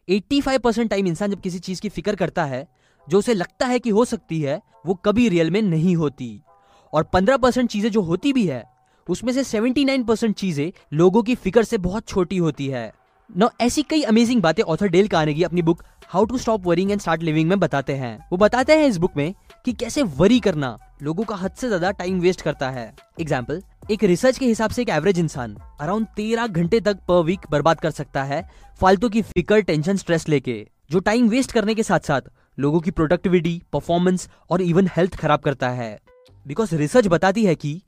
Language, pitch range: Hindi, 150-220 Hz